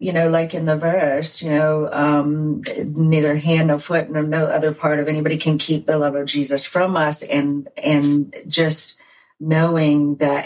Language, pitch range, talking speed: English, 140-155 Hz, 185 wpm